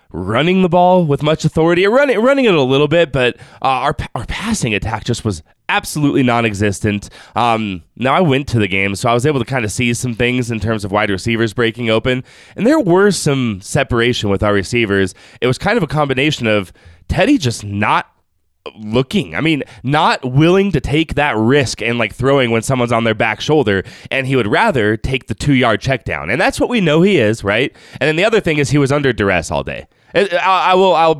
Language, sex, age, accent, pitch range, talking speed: English, male, 20-39, American, 105-145 Hz, 220 wpm